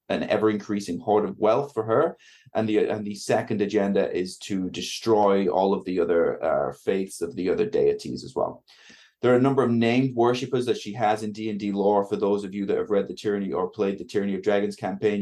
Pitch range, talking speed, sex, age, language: 100-125 Hz, 235 wpm, male, 20-39, English